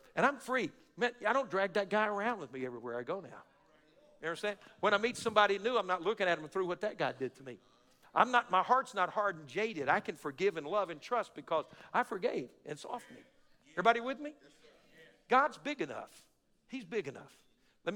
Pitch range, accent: 195-285 Hz, American